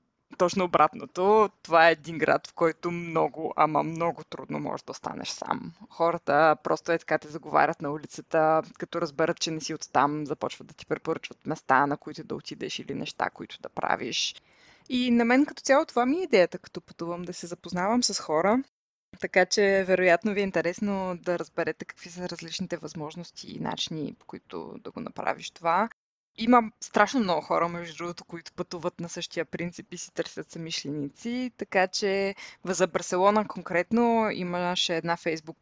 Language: Bulgarian